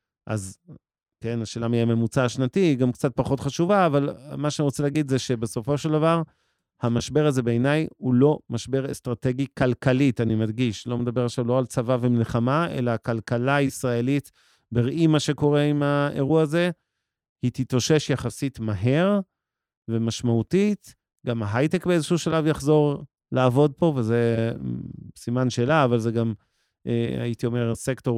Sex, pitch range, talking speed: male, 115-140 Hz, 140 wpm